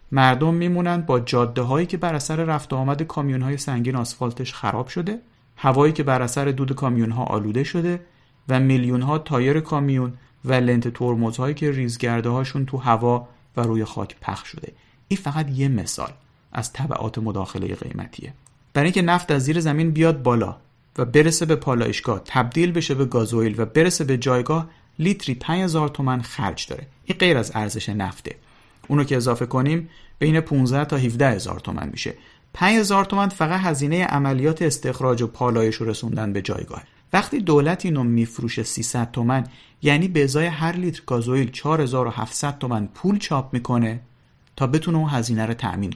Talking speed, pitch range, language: 160 wpm, 120-155 Hz, Persian